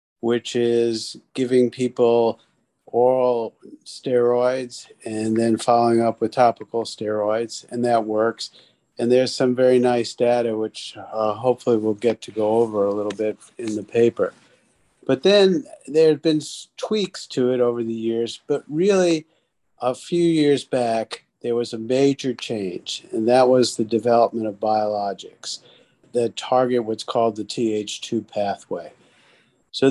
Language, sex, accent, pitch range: English, male, American, 110-130 Hz